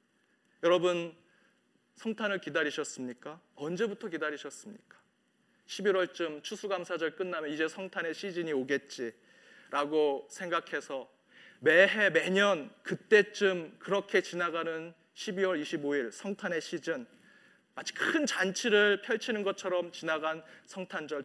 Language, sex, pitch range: Korean, male, 180-235 Hz